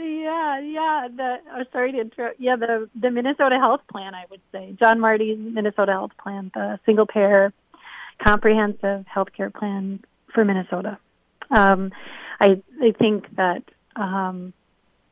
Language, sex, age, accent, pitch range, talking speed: English, female, 30-49, American, 195-220 Hz, 145 wpm